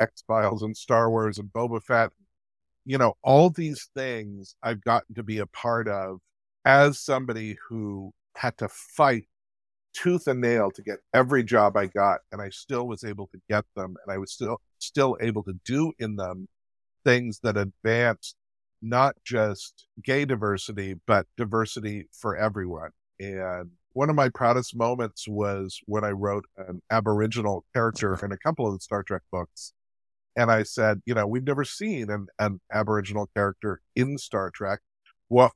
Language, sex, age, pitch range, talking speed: English, male, 50-69, 100-125 Hz, 170 wpm